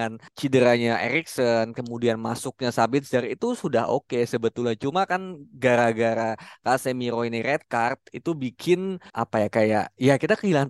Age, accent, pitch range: 20-39, native, 115-140 Hz